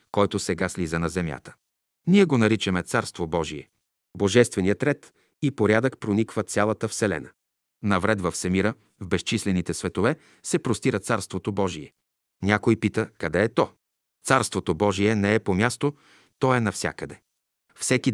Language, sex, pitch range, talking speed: Bulgarian, male, 95-120 Hz, 140 wpm